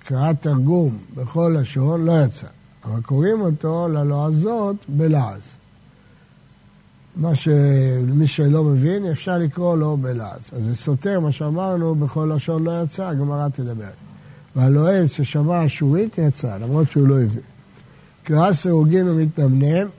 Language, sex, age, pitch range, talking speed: Hebrew, male, 60-79, 135-165 Hz, 125 wpm